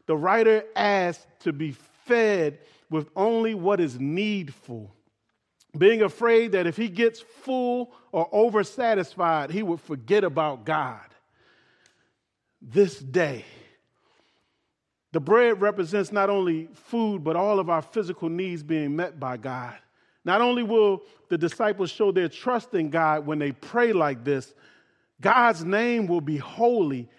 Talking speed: 140 wpm